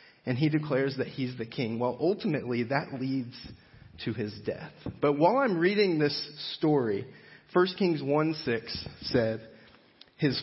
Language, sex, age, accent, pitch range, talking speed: English, male, 40-59, American, 120-165 Hz, 145 wpm